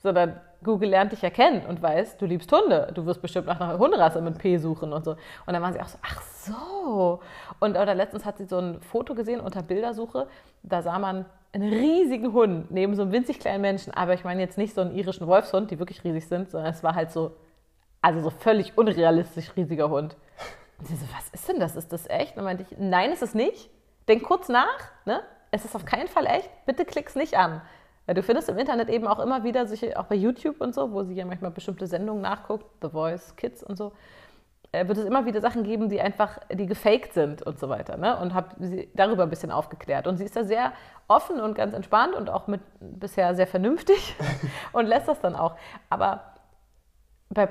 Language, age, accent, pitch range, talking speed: German, 30-49, German, 175-230 Hz, 225 wpm